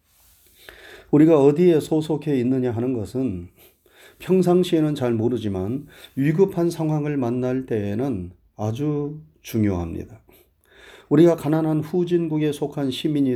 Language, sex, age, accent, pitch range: Korean, male, 30-49, native, 110-160 Hz